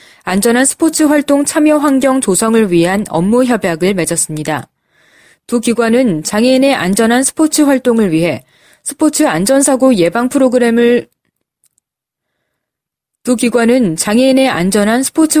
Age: 20-39